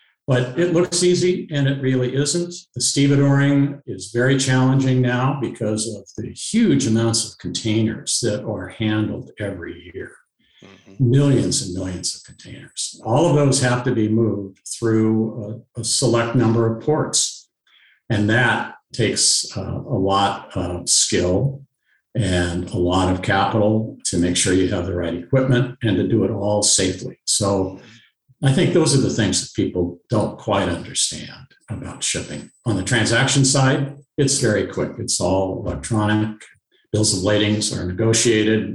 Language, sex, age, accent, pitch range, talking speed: English, male, 50-69, American, 95-130 Hz, 155 wpm